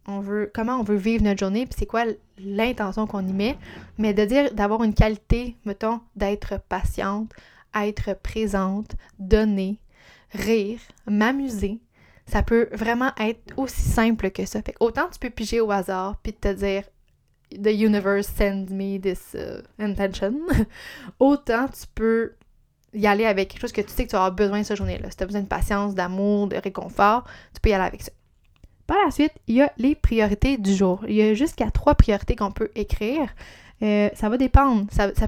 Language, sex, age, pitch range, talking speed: French, female, 20-39, 200-230 Hz, 190 wpm